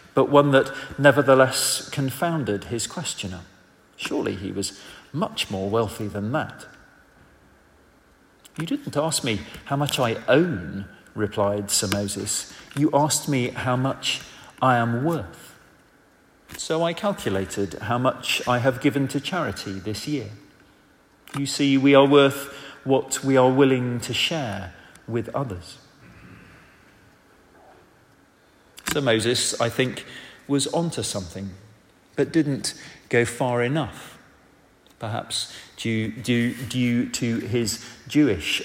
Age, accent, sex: 40-59, British, male